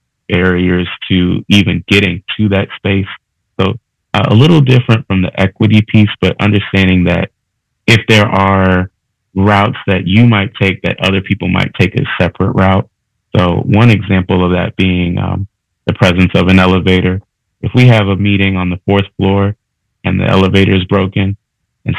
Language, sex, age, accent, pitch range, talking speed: English, male, 30-49, American, 95-110 Hz, 170 wpm